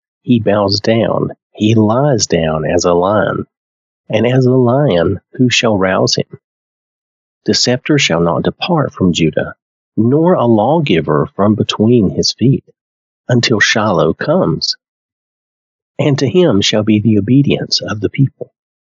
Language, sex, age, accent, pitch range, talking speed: English, male, 40-59, American, 95-135 Hz, 140 wpm